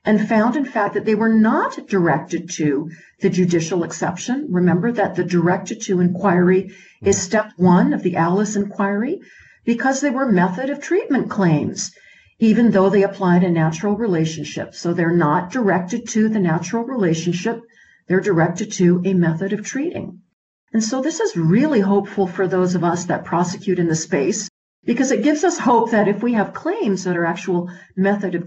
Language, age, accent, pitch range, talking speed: English, 50-69, American, 170-205 Hz, 180 wpm